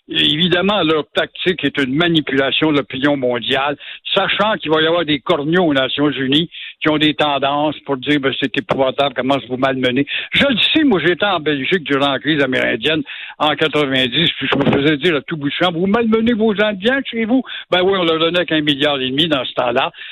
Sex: male